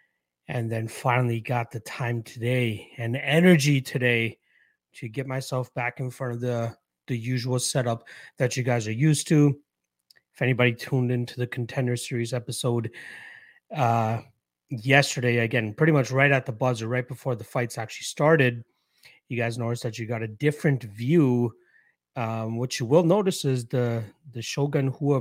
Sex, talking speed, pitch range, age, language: male, 165 wpm, 115-135 Hz, 30-49, English